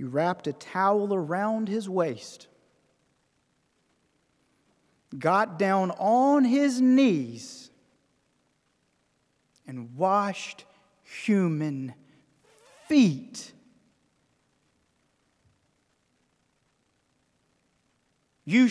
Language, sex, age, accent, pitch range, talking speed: English, male, 40-59, American, 140-220 Hz, 55 wpm